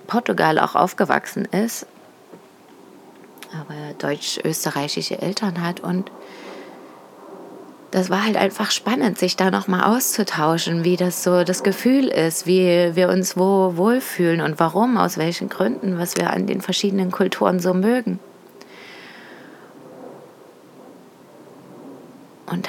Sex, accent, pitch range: female, German, 170-210 Hz